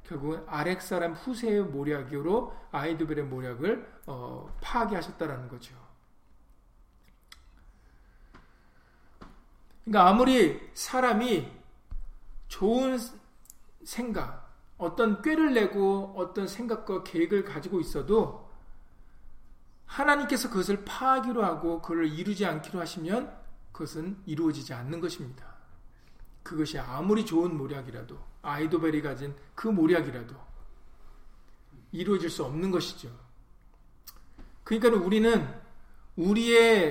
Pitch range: 150-220 Hz